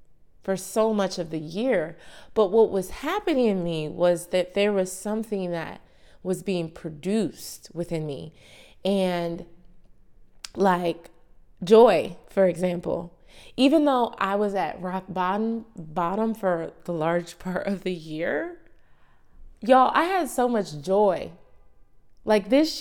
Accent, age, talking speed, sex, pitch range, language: American, 20-39, 135 wpm, female, 165-205 Hz, English